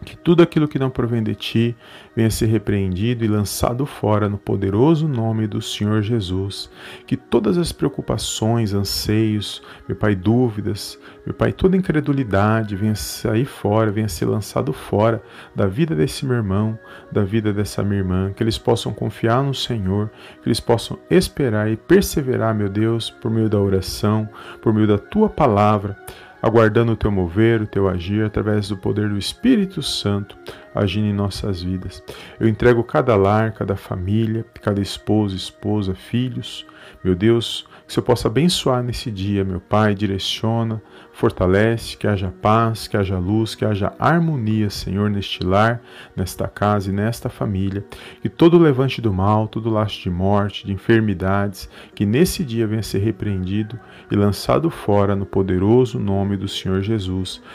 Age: 40-59